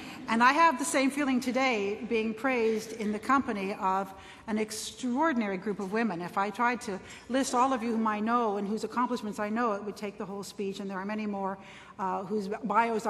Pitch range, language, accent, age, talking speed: 190-240 Hz, English, American, 60-79, 220 wpm